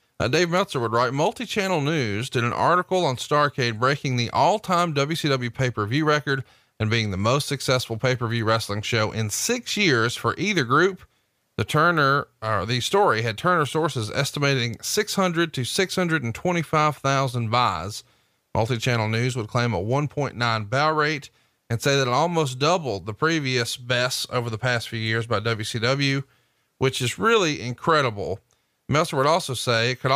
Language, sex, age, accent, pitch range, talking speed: English, male, 40-59, American, 115-150 Hz, 155 wpm